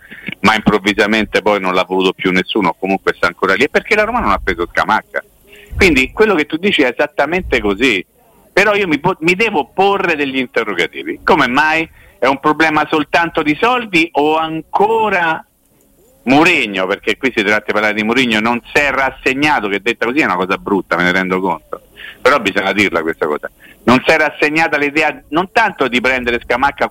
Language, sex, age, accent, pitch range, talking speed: Italian, male, 50-69, native, 120-160 Hz, 185 wpm